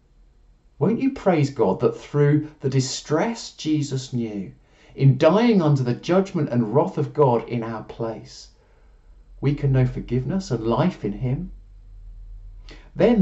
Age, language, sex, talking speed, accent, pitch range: 40-59, English, male, 140 wpm, British, 120-190 Hz